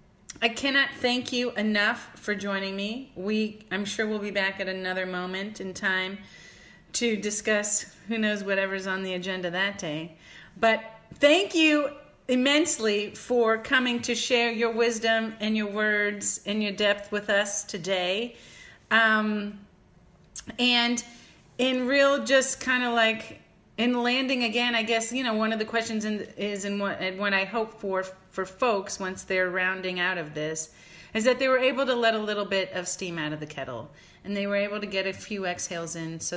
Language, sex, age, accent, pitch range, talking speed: English, female, 30-49, American, 180-225 Hz, 185 wpm